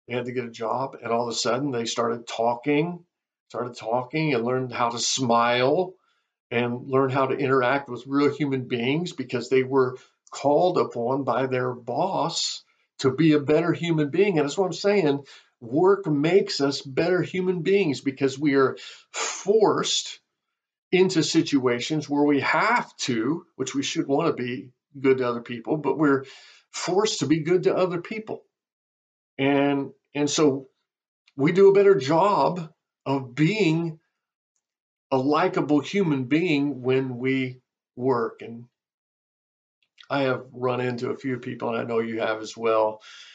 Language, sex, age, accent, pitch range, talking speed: English, male, 50-69, American, 120-150 Hz, 160 wpm